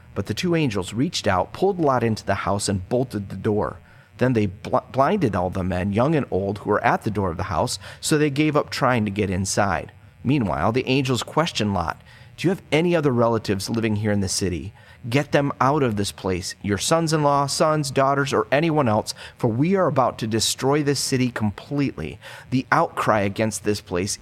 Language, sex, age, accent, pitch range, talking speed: English, male, 30-49, American, 105-140 Hz, 205 wpm